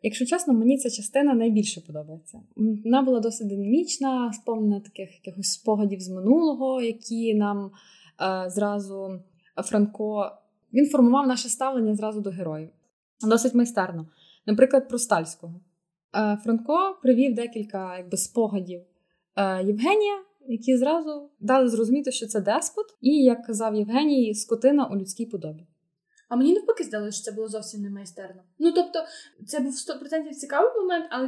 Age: 20-39